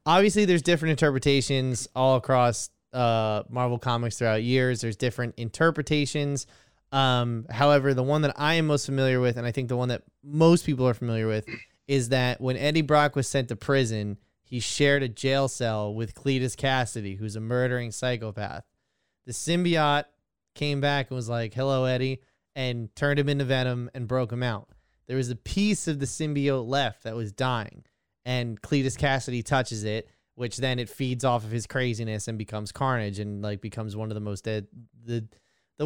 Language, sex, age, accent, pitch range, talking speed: English, male, 20-39, American, 120-140 Hz, 185 wpm